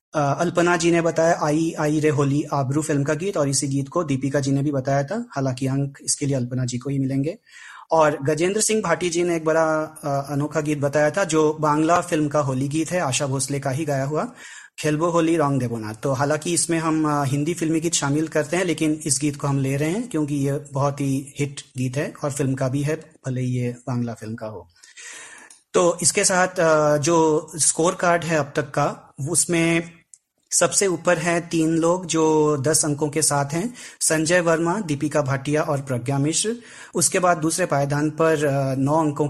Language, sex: Hindi, male